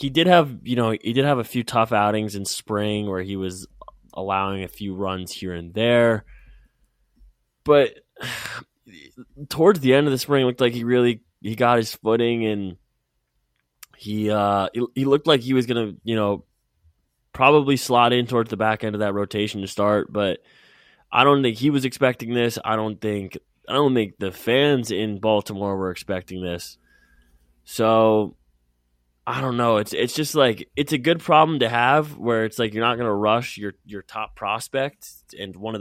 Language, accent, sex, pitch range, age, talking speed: English, American, male, 95-120 Hz, 20-39, 190 wpm